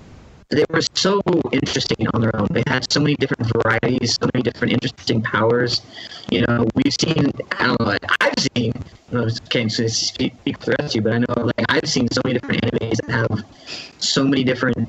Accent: American